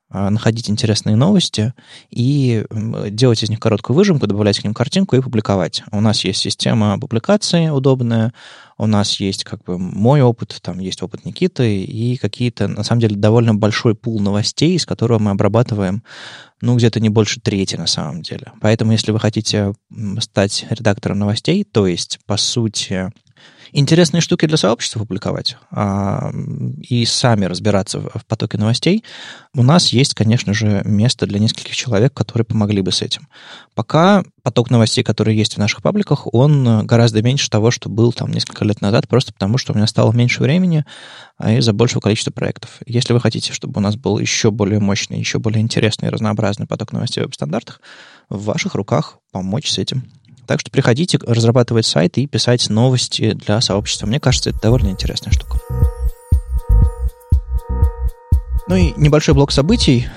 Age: 20-39